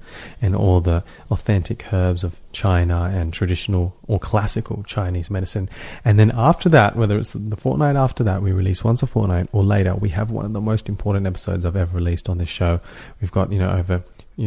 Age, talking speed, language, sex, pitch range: 30-49, 205 wpm, English, male, 90-105 Hz